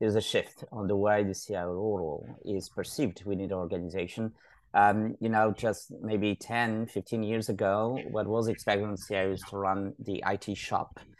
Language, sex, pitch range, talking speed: English, male, 100-120 Hz, 175 wpm